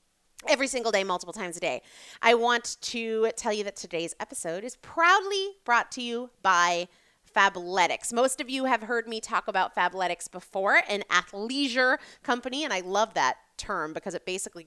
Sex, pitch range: female, 185-265 Hz